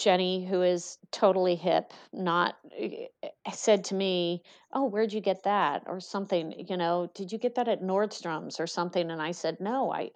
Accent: American